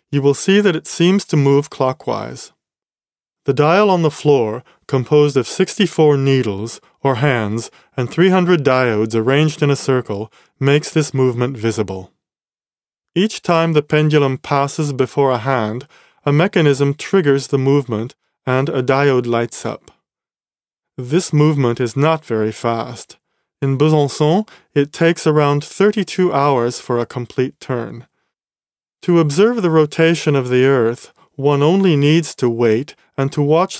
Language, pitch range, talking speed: English, 125-155 Hz, 145 wpm